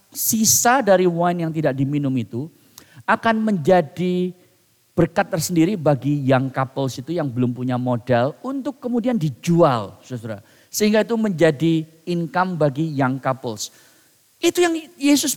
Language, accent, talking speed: English, Indonesian, 125 wpm